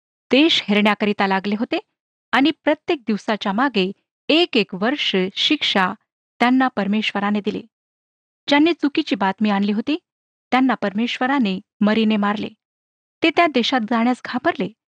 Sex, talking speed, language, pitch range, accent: female, 115 wpm, Marathi, 205-270 Hz, native